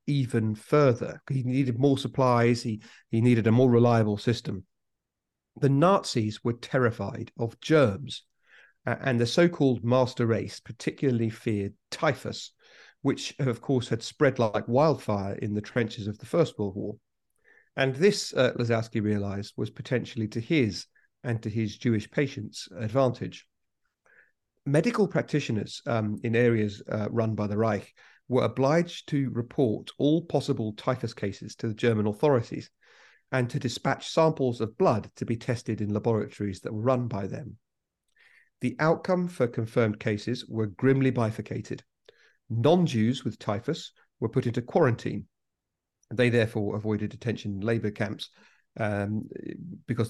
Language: English